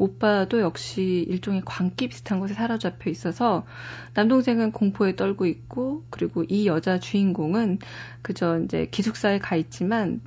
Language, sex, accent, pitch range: Korean, female, native, 175-225 Hz